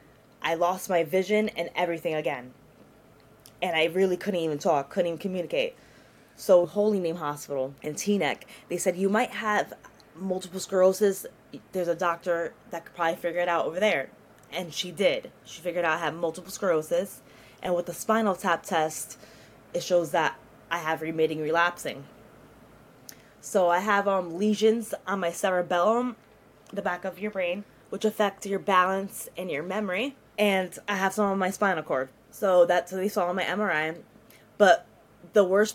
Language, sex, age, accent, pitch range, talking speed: English, female, 20-39, American, 170-210 Hz, 170 wpm